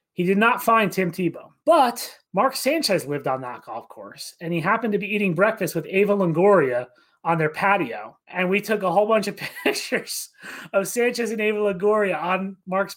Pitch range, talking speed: 160-205 Hz, 195 wpm